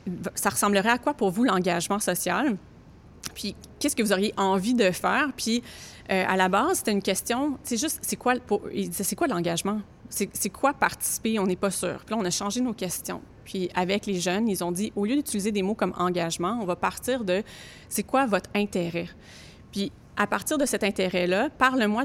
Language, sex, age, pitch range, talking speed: French, female, 30-49, 185-235 Hz, 225 wpm